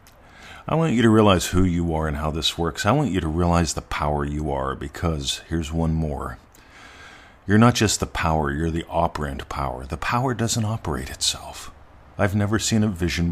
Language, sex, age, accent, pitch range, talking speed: English, male, 50-69, American, 75-90 Hz, 200 wpm